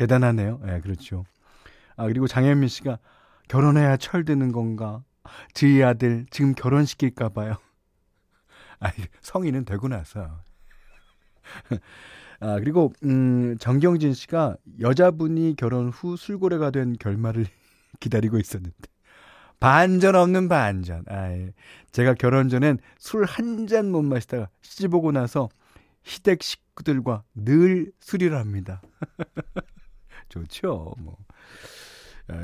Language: Korean